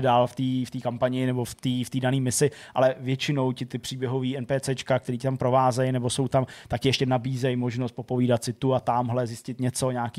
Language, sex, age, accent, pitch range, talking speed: Czech, male, 20-39, native, 125-140 Hz, 220 wpm